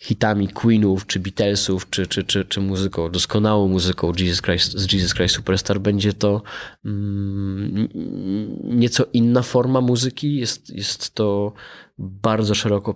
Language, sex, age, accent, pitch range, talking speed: Polish, male, 20-39, native, 95-115 Hz, 120 wpm